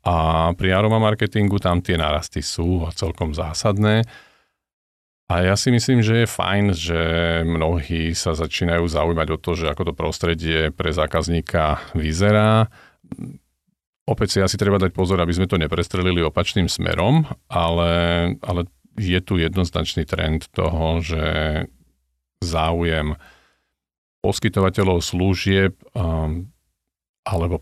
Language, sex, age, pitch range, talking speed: Slovak, male, 50-69, 80-95 Hz, 120 wpm